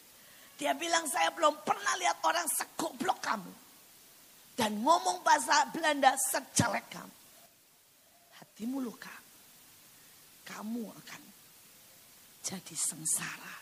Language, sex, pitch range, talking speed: Indonesian, female, 190-300 Hz, 95 wpm